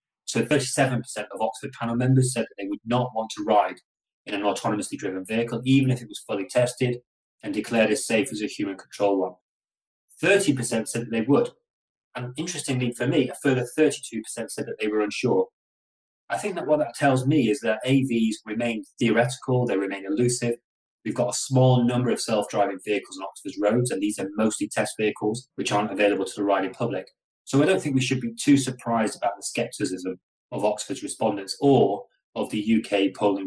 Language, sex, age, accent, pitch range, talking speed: English, male, 30-49, British, 105-130 Hz, 195 wpm